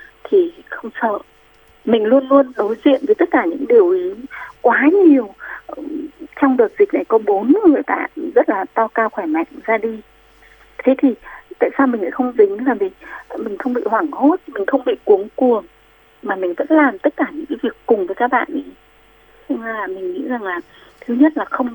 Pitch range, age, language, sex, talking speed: 240-350 Hz, 20-39, Vietnamese, female, 210 wpm